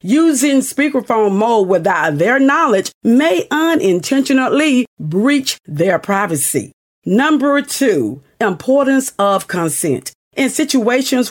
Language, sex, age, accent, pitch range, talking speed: English, female, 50-69, American, 180-260 Hz, 95 wpm